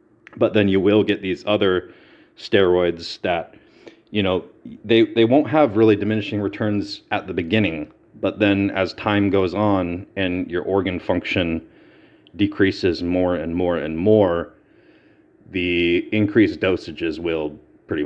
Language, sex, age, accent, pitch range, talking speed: English, male, 30-49, American, 90-105 Hz, 140 wpm